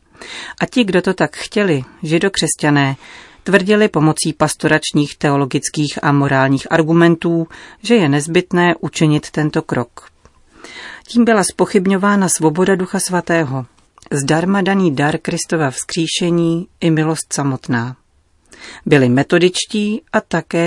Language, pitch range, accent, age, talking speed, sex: Czech, 145-175 Hz, native, 40-59, 110 wpm, female